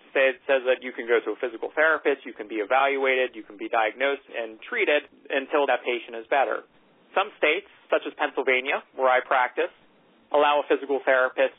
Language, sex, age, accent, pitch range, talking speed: English, male, 40-59, American, 125-160 Hz, 190 wpm